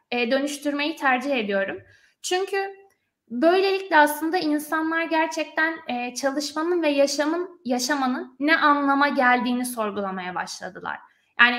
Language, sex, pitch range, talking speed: Turkish, female, 240-330 Hz, 95 wpm